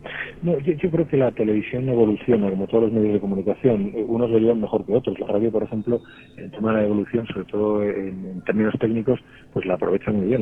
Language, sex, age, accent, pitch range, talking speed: Spanish, male, 40-59, Spanish, 100-120 Hz, 230 wpm